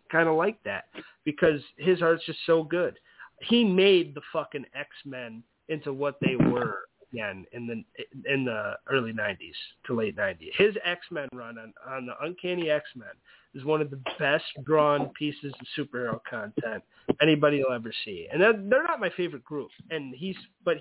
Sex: male